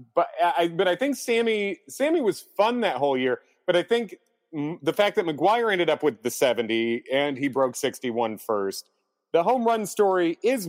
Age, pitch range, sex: 40-59, 125-200 Hz, male